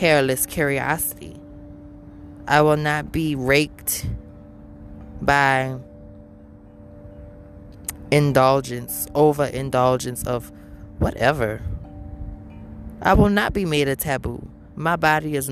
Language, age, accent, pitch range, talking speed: English, 20-39, American, 100-155 Hz, 90 wpm